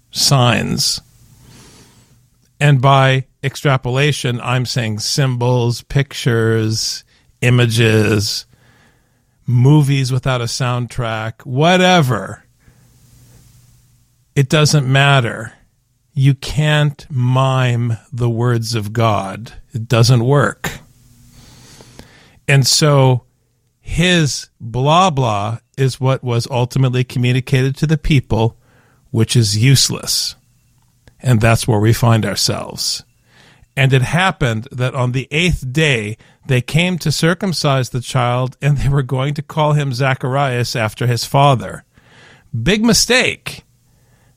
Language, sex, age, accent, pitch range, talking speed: English, male, 50-69, American, 120-140 Hz, 105 wpm